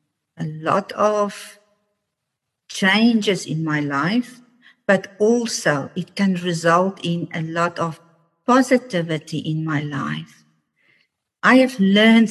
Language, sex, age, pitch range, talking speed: English, female, 50-69, 155-210 Hz, 110 wpm